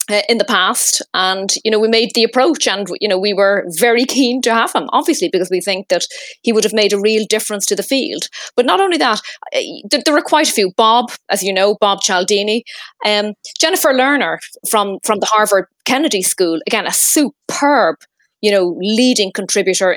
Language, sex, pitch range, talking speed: English, female, 195-250 Hz, 205 wpm